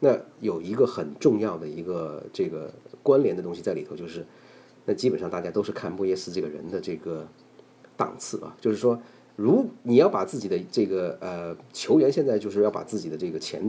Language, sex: Chinese, male